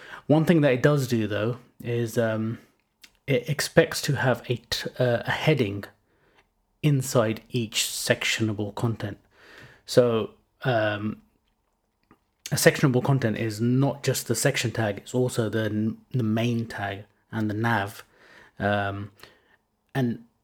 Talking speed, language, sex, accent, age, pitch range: 130 wpm, English, male, British, 30-49, 110-135 Hz